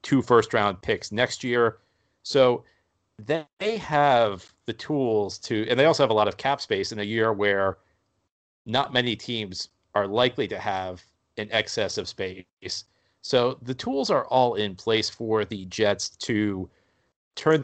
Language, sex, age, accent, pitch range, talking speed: English, male, 40-59, American, 105-130 Hz, 160 wpm